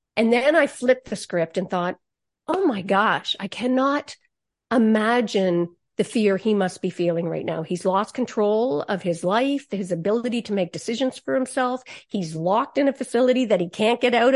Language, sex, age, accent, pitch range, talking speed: English, female, 50-69, American, 195-250 Hz, 190 wpm